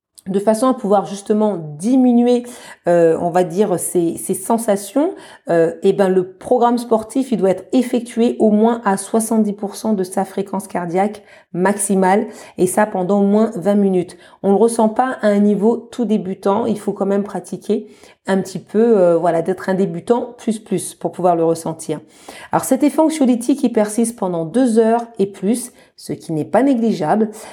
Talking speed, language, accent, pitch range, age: 180 wpm, French, French, 175-230 Hz, 40-59